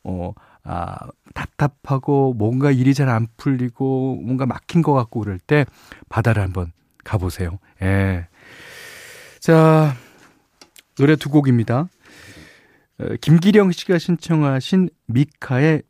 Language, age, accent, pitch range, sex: Korean, 40-59, native, 115-155 Hz, male